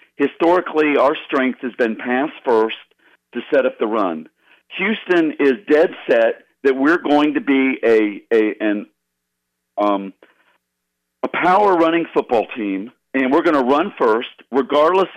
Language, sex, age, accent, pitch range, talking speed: English, male, 50-69, American, 110-155 Hz, 145 wpm